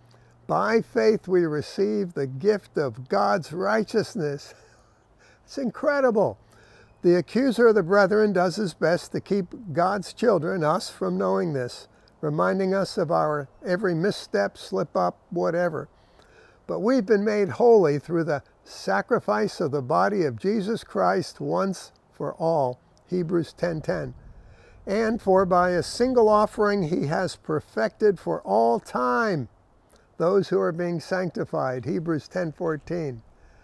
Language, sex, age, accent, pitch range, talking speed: English, male, 60-79, American, 155-205 Hz, 135 wpm